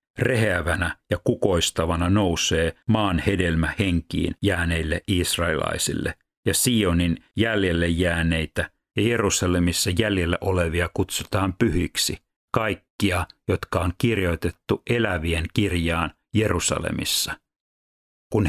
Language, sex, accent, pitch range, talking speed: Finnish, male, native, 85-100 Hz, 90 wpm